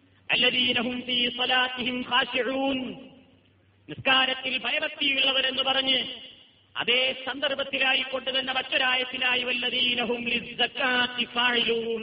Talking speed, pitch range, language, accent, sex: 95 wpm, 245-275 Hz, Malayalam, native, male